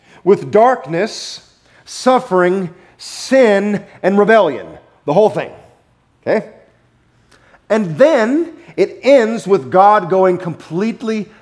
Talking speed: 95 wpm